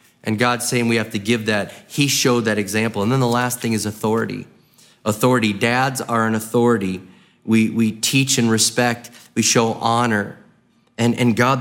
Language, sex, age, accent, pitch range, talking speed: English, male, 30-49, American, 105-125 Hz, 180 wpm